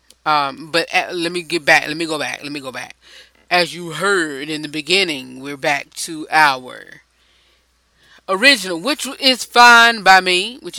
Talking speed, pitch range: 170 wpm, 145-175 Hz